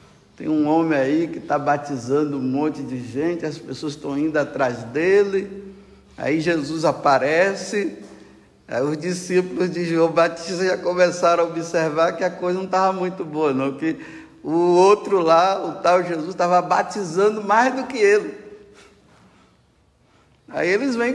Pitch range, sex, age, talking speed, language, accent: 140-205 Hz, male, 60-79, 155 wpm, Portuguese, Brazilian